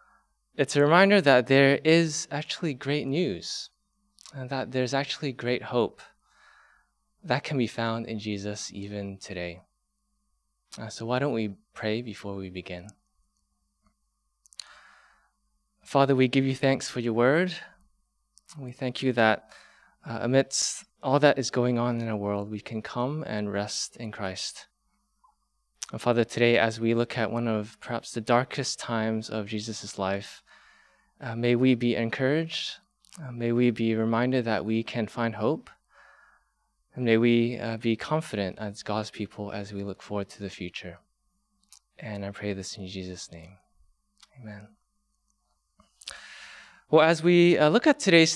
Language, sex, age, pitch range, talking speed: English, male, 20-39, 105-140 Hz, 155 wpm